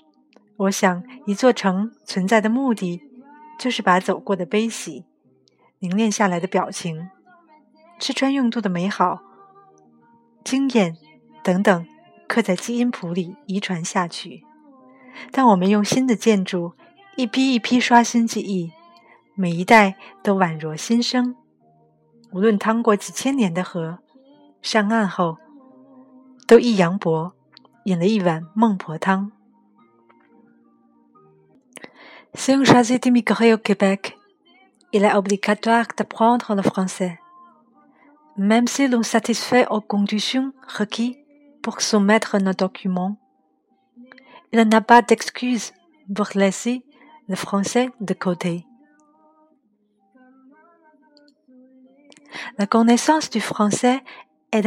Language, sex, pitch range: Chinese, female, 195-260 Hz